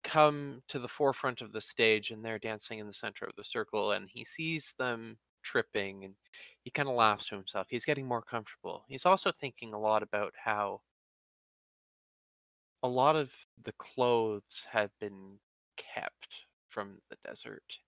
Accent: American